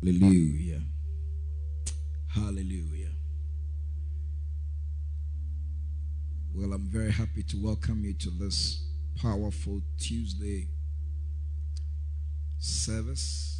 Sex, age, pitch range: male, 50-69, 75-100 Hz